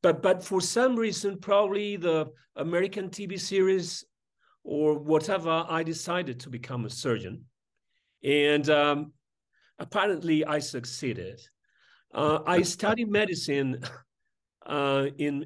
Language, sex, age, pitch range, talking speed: English, male, 40-59, 130-175 Hz, 115 wpm